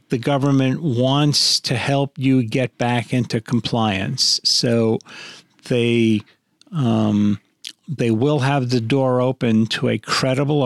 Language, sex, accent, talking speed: English, male, American, 125 wpm